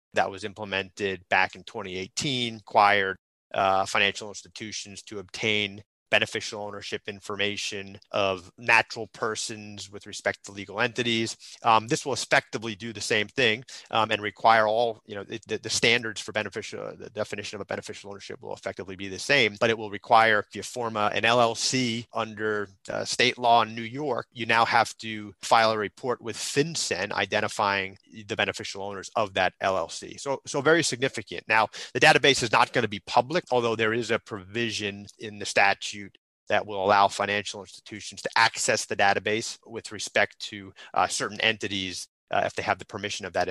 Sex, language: male, English